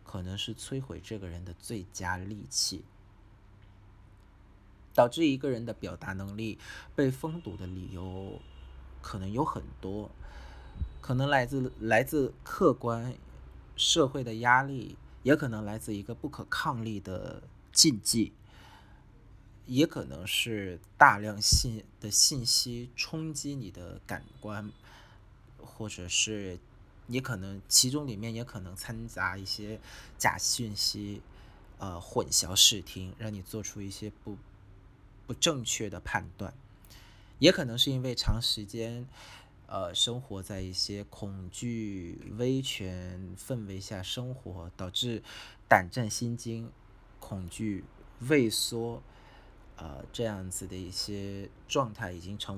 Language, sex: Vietnamese, male